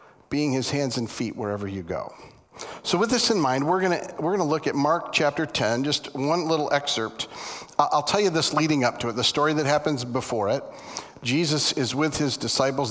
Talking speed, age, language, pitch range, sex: 215 wpm, 40-59, English, 120-155 Hz, male